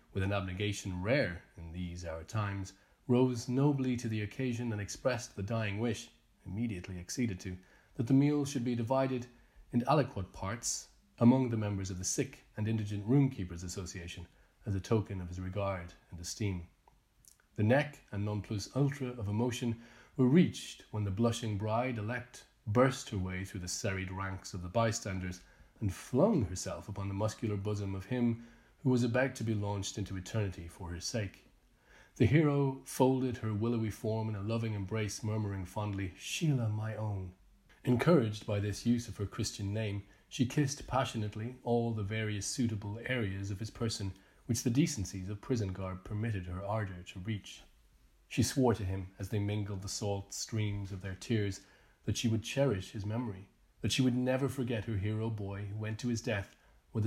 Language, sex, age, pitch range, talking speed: English, male, 30-49, 100-120 Hz, 180 wpm